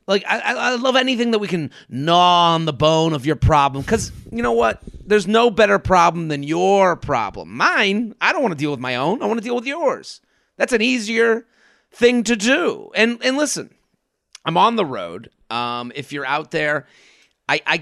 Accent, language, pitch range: American, English, 125-170 Hz